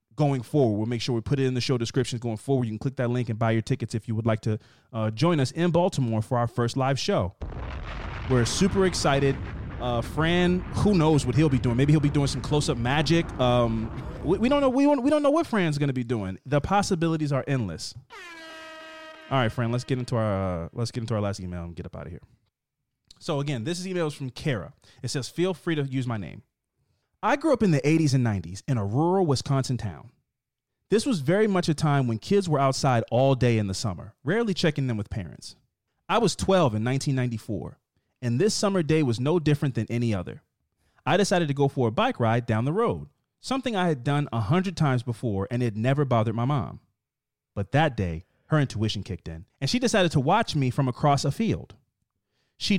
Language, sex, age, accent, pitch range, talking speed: English, male, 30-49, American, 115-160 Hz, 230 wpm